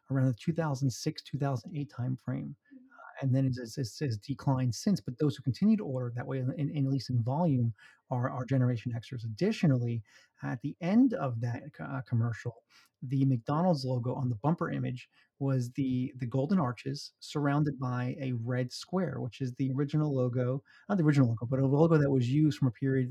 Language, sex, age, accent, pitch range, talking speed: English, male, 30-49, American, 130-150 Hz, 190 wpm